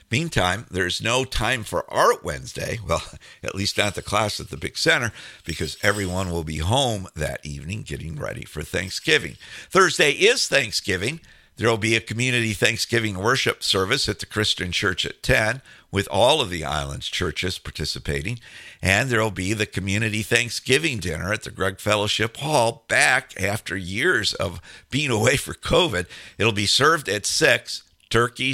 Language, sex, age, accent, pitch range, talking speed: English, male, 50-69, American, 90-120 Hz, 160 wpm